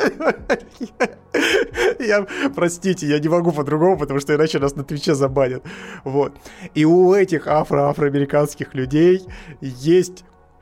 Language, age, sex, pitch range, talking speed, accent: Russian, 20-39, male, 135-180 Hz, 120 wpm, native